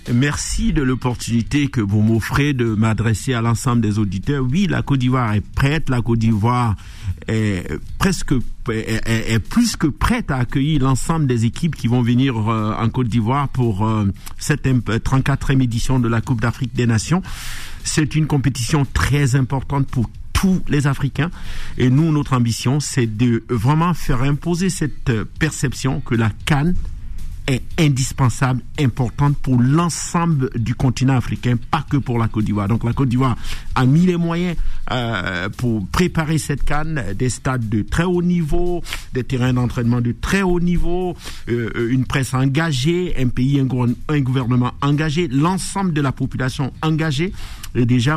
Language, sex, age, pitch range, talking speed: French, male, 50-69, 115-145 Hz, 155 wpm